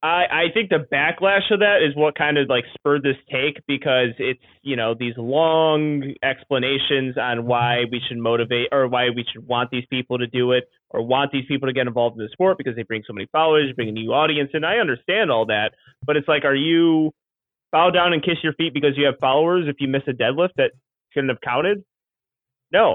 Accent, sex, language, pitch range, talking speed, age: American, male, English, 125-150 Hz, 225 wpm, 20-39